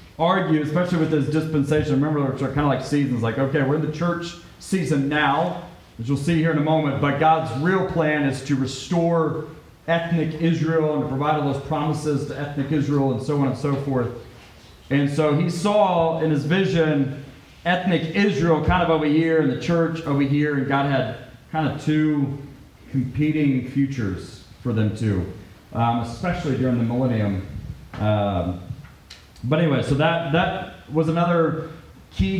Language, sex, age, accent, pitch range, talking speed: English, male, 40-59, American, 125-155 Hz, 175 wpm